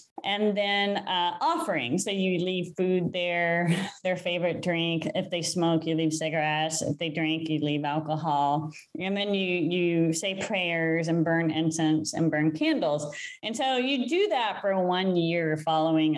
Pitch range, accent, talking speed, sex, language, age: 165-225 Hz, American, 165 wpm, female, English, 20-39